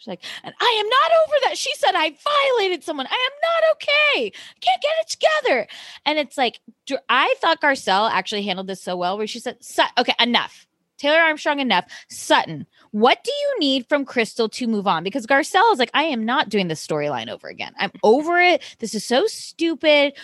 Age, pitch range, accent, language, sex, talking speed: 20-39, 210-300 Hz, American, English, female, 210 wpm